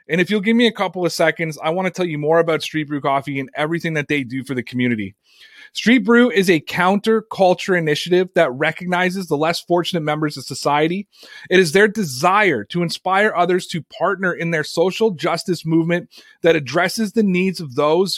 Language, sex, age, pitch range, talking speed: English, male, 30-49, 165-205 Hz, 200 wpm